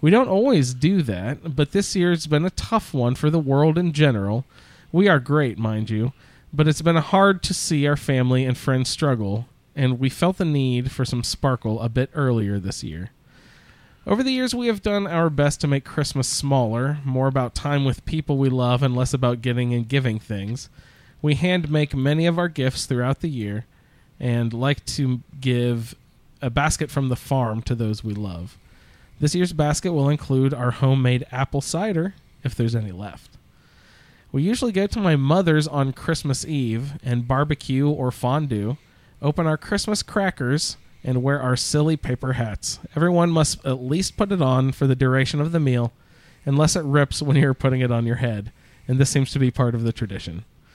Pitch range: 125-155 Hz